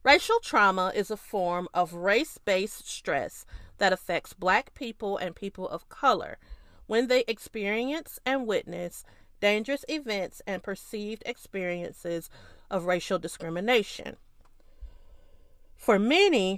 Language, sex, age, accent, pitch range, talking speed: English, female, 40-59, American, 185-230 Hz, 110 wpm